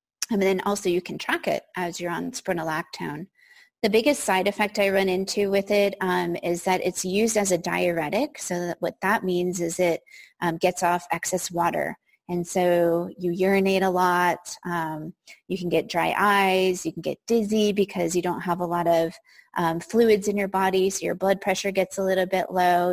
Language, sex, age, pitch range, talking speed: English, female, 20-39, 175-200 Hz, 200 wpm